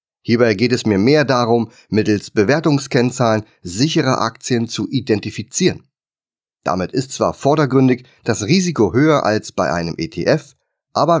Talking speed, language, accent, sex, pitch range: 130 wpm, German, German, male, 115-150 Hz